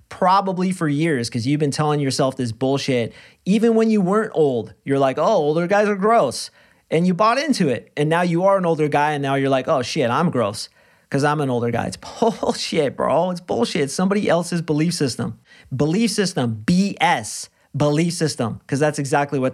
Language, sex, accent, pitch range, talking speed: English, male, American, 125-150 Hz, 200 wpm